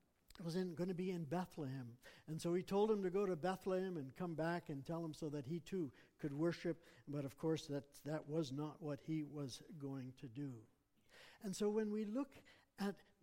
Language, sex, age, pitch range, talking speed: English, male, 60-79, 150-200 Hz, 210 wpm